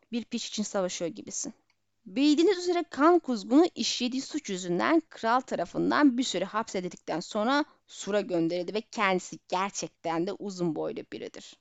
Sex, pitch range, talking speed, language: female, 205-285 Hz, 140 wpm, Turkish